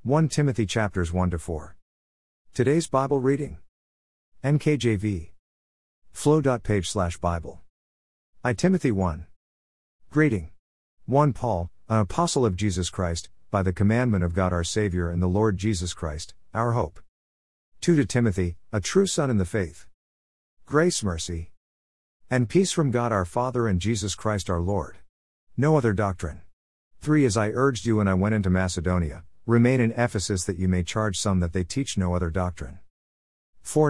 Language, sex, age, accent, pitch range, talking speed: English, male, 50-69, American, 85-115 Hz, 155 wpm